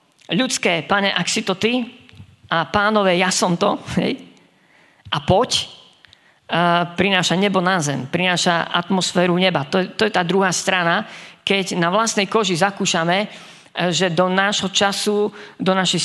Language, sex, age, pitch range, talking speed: Slovak, female, 50-69, 155-190 Hz, 140 wpm